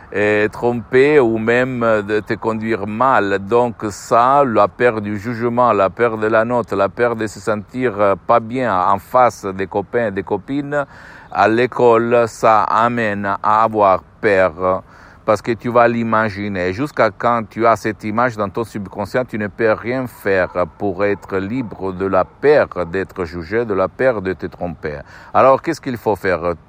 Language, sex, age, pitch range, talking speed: Italian, male, 60-79, 100-120 Hz, 175 wpm